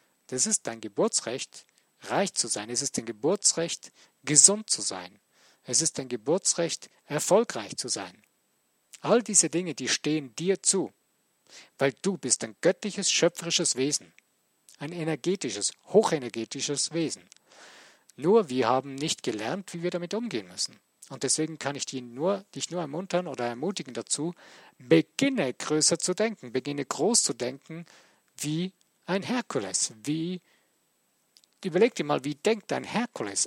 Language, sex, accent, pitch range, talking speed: German, male, German, 135-185 Hz, 140 wpm